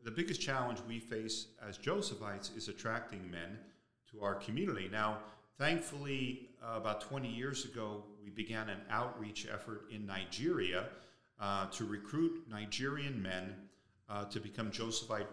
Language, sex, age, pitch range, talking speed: English, male, 40-59, 100-120 Hz, 140 wpm